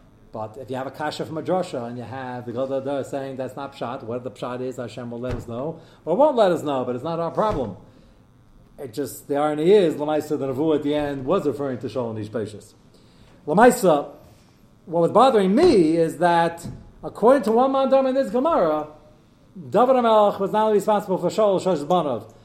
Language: English